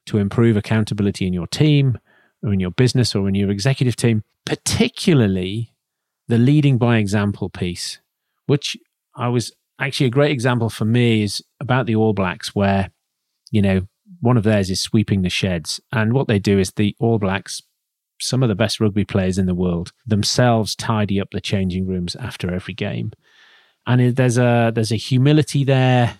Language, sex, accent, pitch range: English, male, British, 105-130 Hz